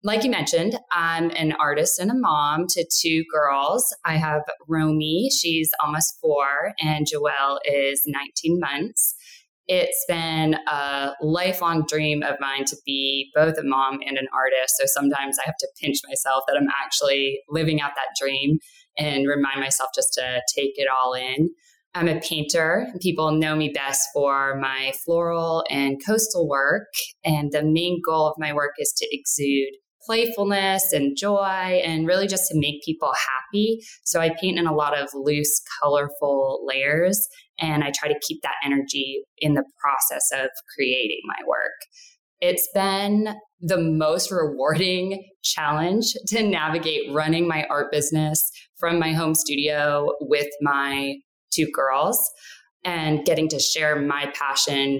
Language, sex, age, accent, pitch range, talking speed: English, female, 10-29, American, 140-180 Hz, 160 wpm